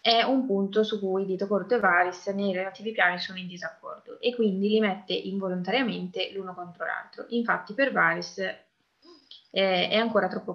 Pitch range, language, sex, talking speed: 185-225 Hz, Italian, female, 170 wpm